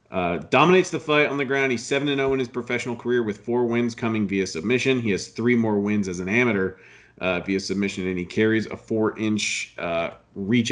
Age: 40-59